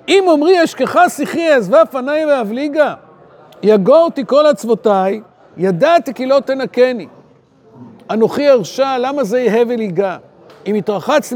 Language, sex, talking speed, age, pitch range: Hebrew, male, 115 wpm, 50-69, 220-320 Hz